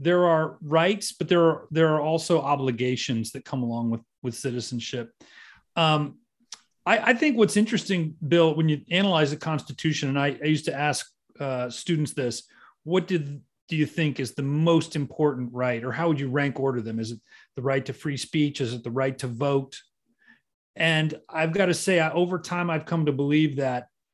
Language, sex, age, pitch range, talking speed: English, male, 40-59, 130-165 Hz, 200 wpm